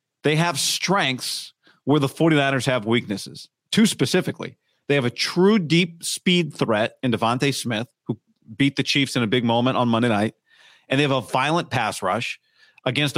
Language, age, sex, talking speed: English, 40-59, male, 180 wpm